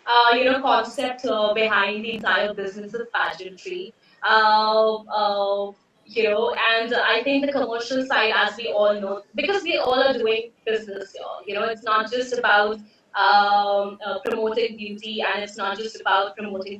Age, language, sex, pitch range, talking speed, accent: 20-39, Hindi, female, 205-245 Hz, 170 wpm, native